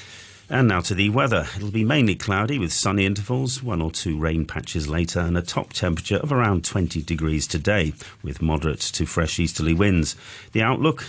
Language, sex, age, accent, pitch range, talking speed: English, male, 40-59, British, 85-115 Hz, 190 wpm